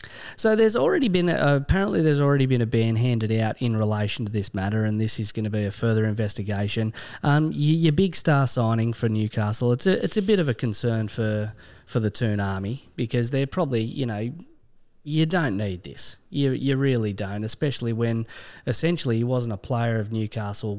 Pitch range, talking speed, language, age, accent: 105-130 Hz, 200 wpm, English, 20-39, Australian